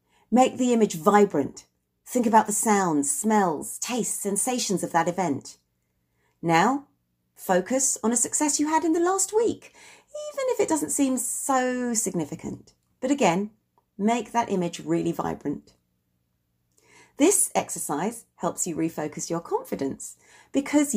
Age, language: 40-59, English